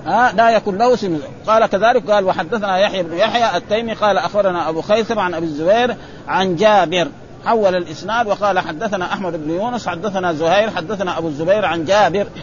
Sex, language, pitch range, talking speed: male, Arabic, 175-225 Hz, 170 wpm